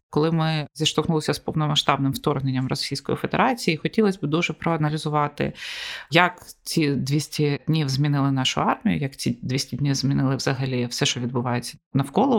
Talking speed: 140 wpm